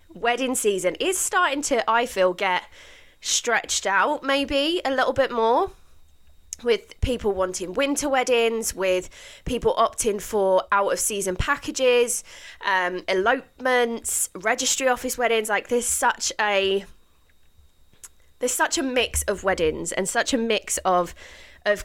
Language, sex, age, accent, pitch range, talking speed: English, female, 20-39, British, 185-265 Hz, 130 wpm